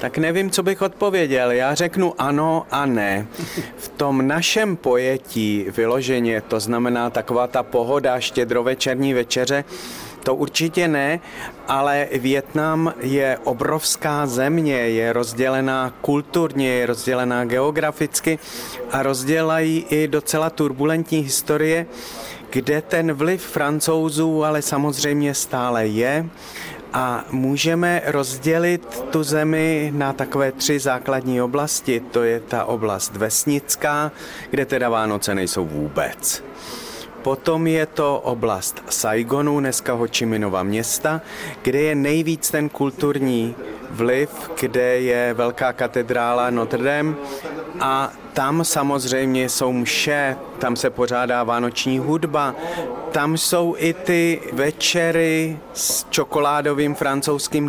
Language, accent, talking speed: Czech, native, 115 wpm